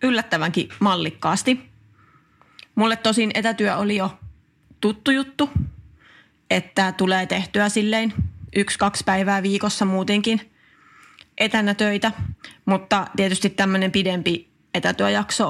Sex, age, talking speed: female, 30-49, 95 wpm